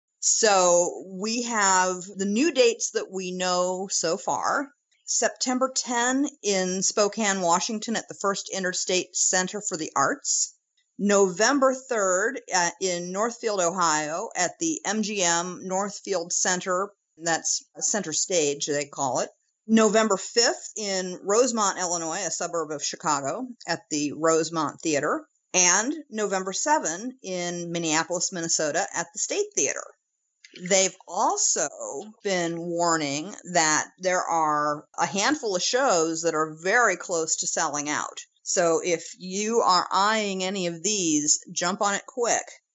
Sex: female